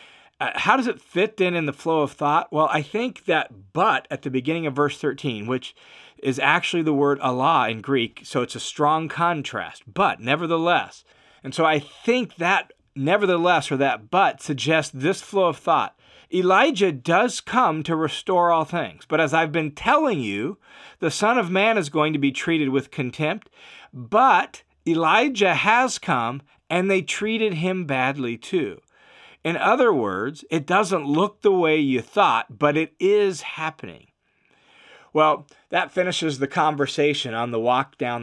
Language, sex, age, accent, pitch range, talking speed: English, male, 40-59, American, 135-175 Hz, 170 wpm